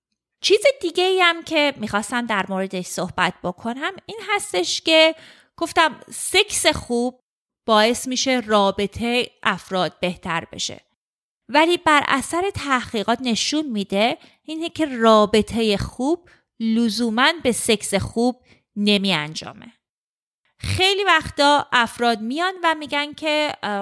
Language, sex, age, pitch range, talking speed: Persian, female, 30-49, 215-300 Hz, 115 wpm